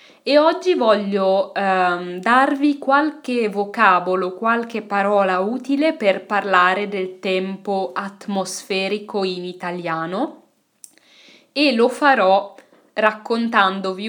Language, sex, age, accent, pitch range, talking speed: Italian, female, 20-39, native, 185-230 Hz, 90 wpm